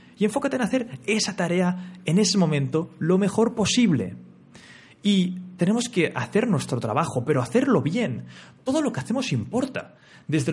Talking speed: 155 wpm